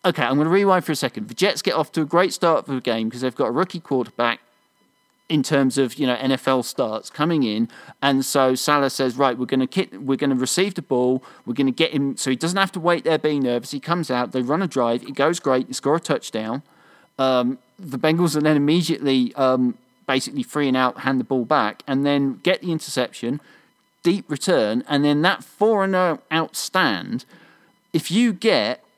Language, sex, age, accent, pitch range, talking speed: English, male, 40-59, British, 130-165 Hz, 215 wpm